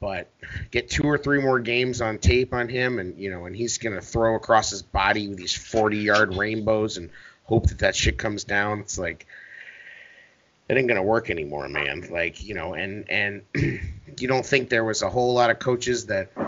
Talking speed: 205 wpm